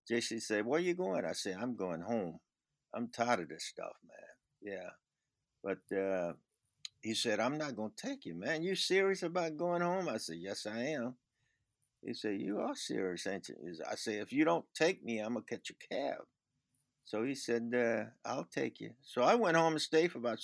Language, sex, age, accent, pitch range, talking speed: English, male, 60-79, American, 105-135 Hz, 215 wpm